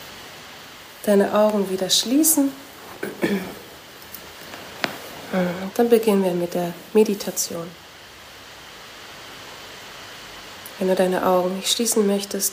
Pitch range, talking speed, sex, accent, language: 180-205 Hz, 85 wpm, female, German, German